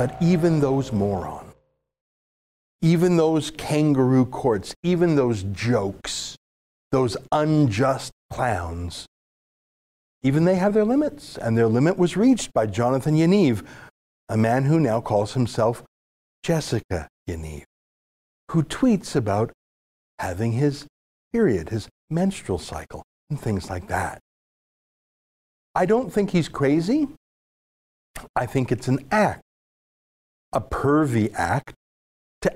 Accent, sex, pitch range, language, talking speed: American, male, 110-170 Hz, English, 115 wpm